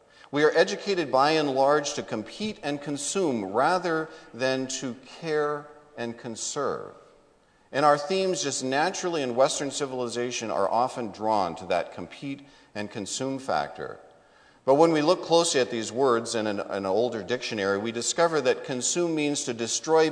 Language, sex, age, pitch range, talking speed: English, male, 50-69, 115-155 Hz, 160 wpm